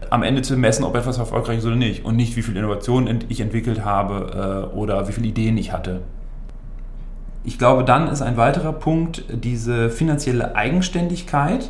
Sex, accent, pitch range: male, German, 110-135 Hz